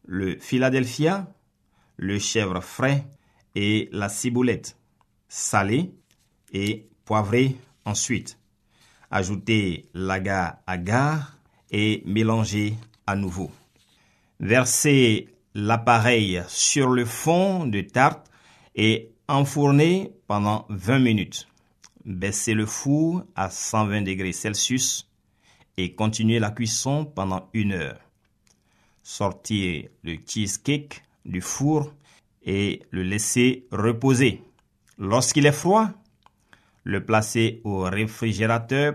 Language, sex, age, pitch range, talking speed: French, male, 50-69, 95-125 Hz, 95 wpm